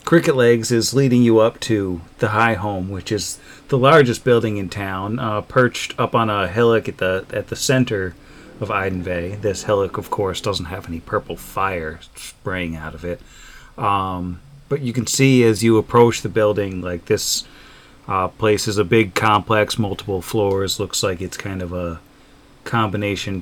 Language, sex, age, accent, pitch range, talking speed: English, male, 30-49, American, 95-125 Hz, 180 wpm